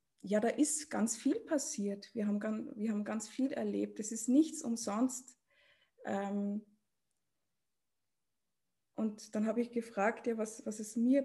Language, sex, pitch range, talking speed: German, female, 215-260 Hz, 145 wpm